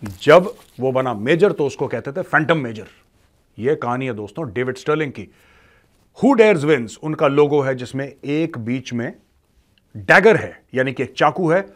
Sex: male